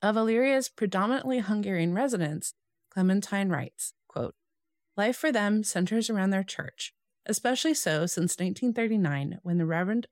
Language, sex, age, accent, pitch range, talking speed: English, female, 30-49, American, 165-230 Hz, 125 wpm